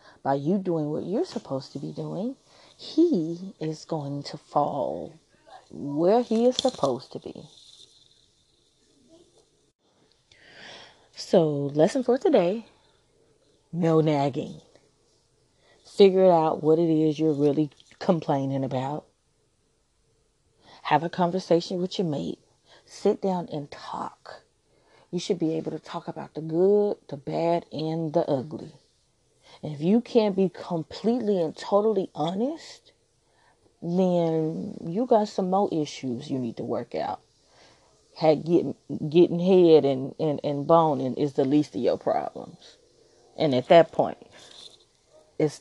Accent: American